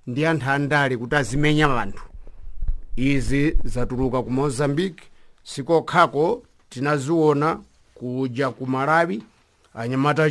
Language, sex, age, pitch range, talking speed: English, male, 50-69, 145-185 Hz, 70 wpm